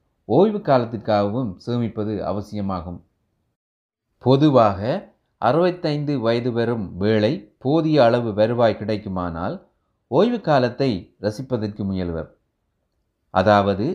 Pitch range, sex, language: 95-115 Hz, male, Tamil